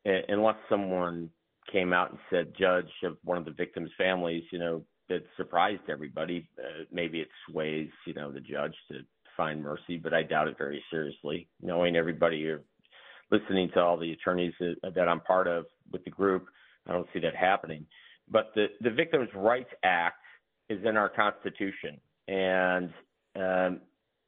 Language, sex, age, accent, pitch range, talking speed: English, male, 50-69, American, 85-95 Hz, 170 wpm